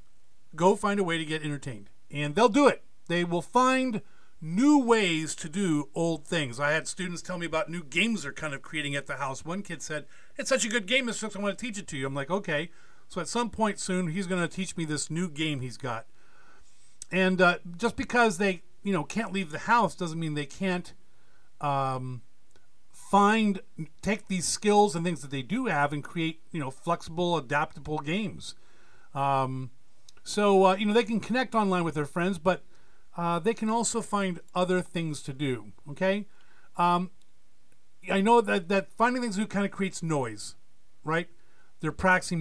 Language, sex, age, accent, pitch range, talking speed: English, male, 50-69, American, 150-200 Hz, 200 wpm